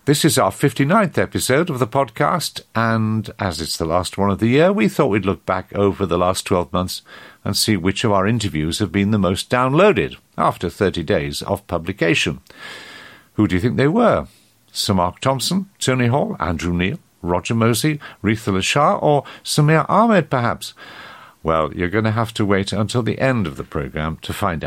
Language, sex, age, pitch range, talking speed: English, male, 50-69, 90-135 Hz, 190 wpm